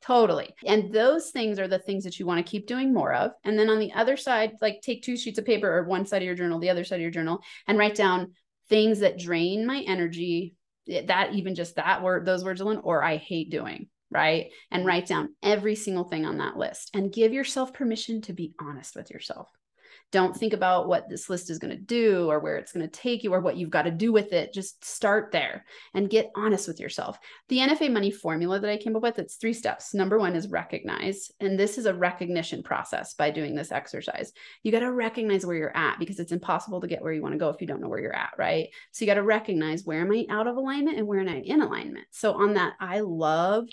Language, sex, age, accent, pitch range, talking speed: English, female, 30-49, American, 175-220 Hz, 250 wpm